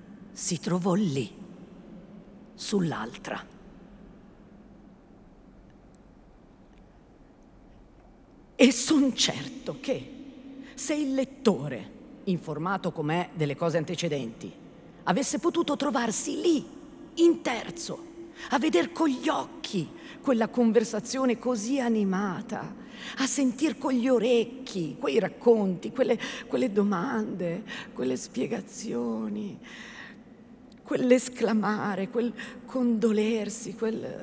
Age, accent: 40-59, native